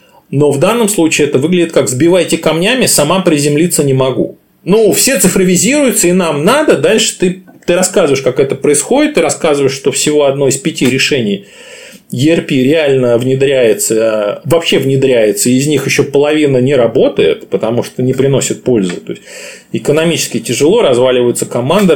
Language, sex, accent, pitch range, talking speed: Russian, male, native, 130-180 Hz, 155 wpm